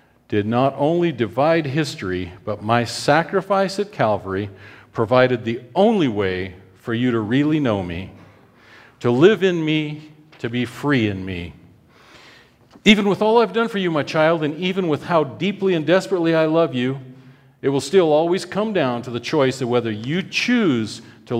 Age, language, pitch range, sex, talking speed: 40-59, English, 115-170 Hz, male, 175 wpm